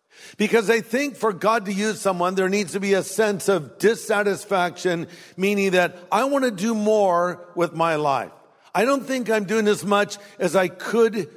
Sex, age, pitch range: male, 50-69, 175-220 Hz